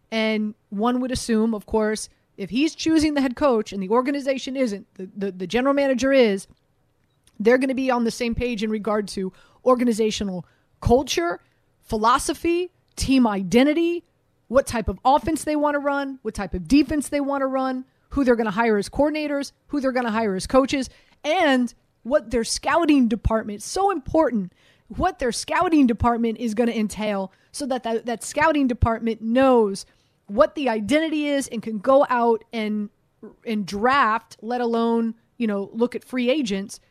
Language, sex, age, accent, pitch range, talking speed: English, female, 30-49, American, 220-275 Hz, 175 wpm